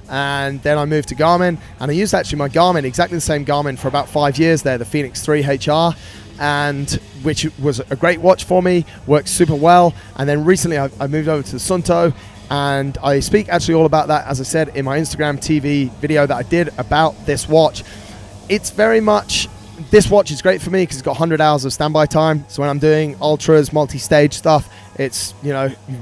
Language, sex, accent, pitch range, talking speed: English, male, British, 130-155 Hz, 215 wpm